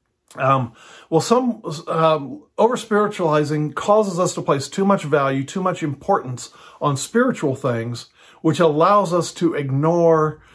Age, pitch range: 40-59, 135-165 Hz